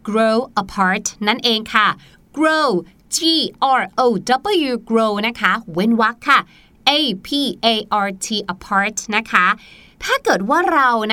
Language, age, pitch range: Thai, 20-39, 230-325 Hz